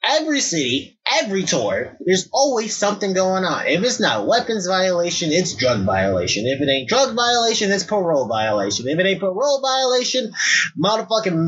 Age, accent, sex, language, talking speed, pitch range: 20-39, American, male, English, 160 wpm, 135-195 Hz